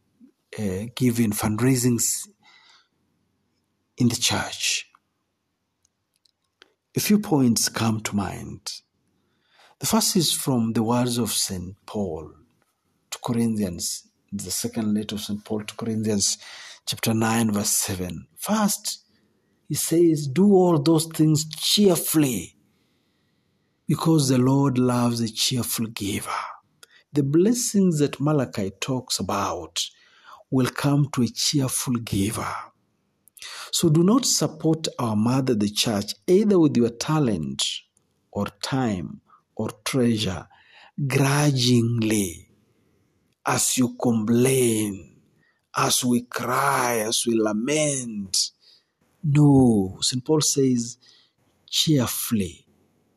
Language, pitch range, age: Swahili, 110-155 Hz, 50-69